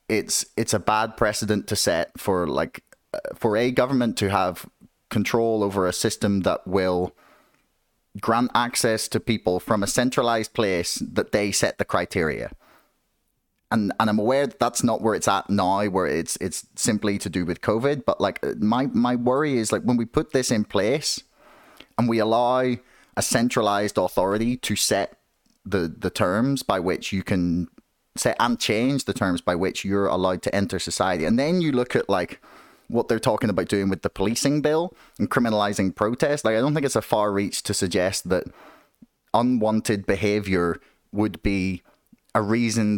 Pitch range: 100-120 Hz